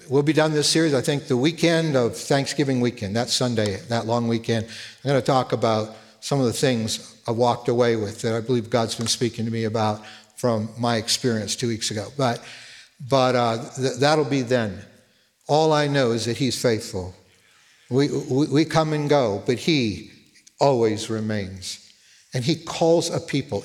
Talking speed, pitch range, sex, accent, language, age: 190 wpm, 110-145 Hz, male, American, English, 60-79